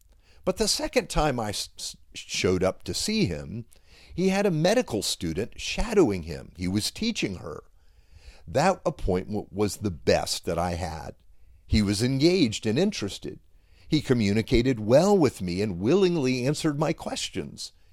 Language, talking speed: English, 145 wpm